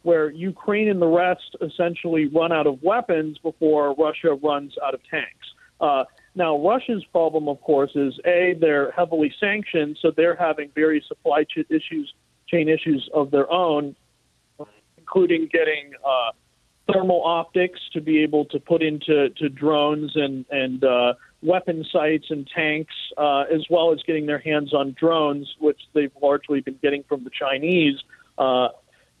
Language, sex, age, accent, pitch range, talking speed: English, male, 40-59, American, 150-180 Hz, 150 wpm